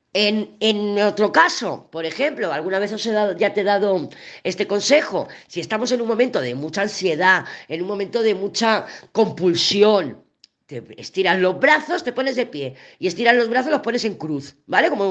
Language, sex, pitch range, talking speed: Spanish, female, 165-235 Hz, 195 wpm